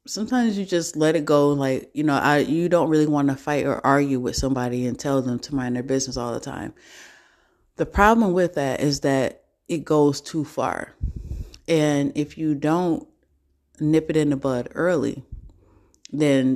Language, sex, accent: English, female, American